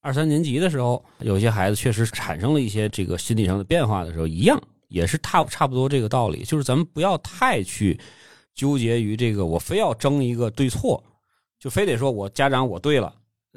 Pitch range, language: 100-140 Hz, Chinese